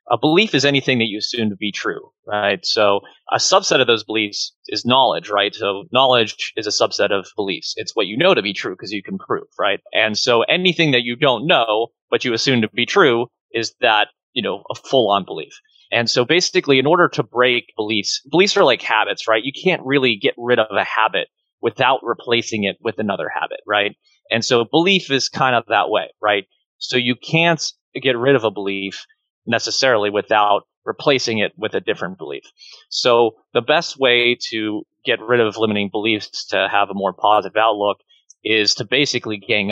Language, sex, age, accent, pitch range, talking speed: English, male, 30-49, American, 110-135 Hz, 200 wpm